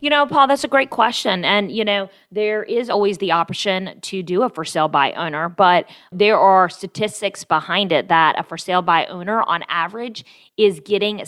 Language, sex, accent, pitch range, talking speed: English, female, American, 170-205 Hz, 200 wpm